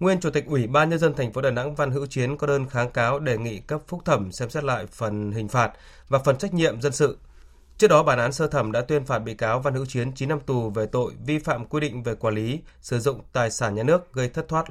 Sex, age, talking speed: male, 20-39, 285 wpm